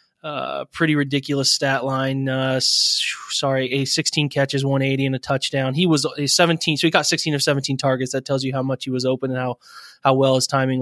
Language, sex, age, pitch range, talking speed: English, male, 20-39, 135-150 Hz, 220 wpm